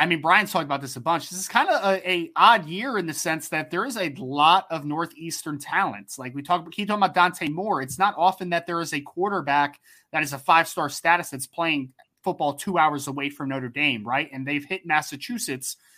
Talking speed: 235 wpm